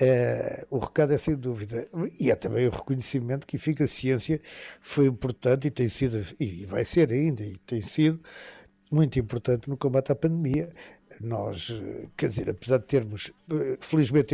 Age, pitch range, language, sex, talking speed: 60-79, 125-155 Hz, Portuguese, male, 170 wpm